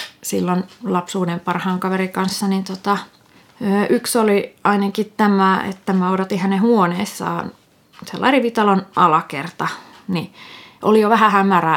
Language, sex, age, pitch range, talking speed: Finnish, female, 30-49, 180-205 Hz, 125 wpm